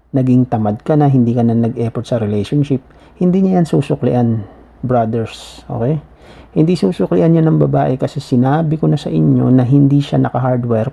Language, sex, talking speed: Filipino, male, 170 wpm